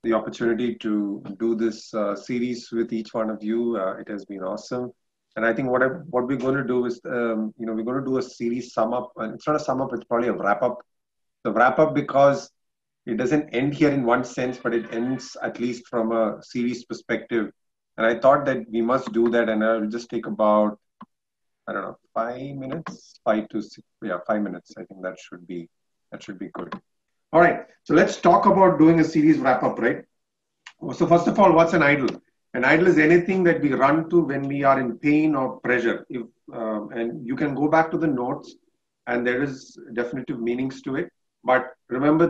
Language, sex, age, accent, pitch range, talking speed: English, male, 30-49, Indian, 115-150 Hz, 215 wpm